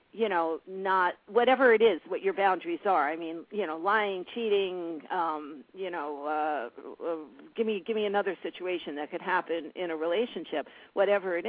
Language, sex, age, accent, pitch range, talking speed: English, female, 50-69, American, 170-215 Hz, 185 wpm